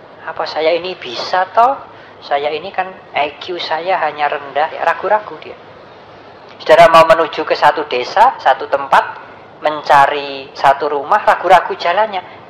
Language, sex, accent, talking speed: English, female, Indonesian, 135 wpm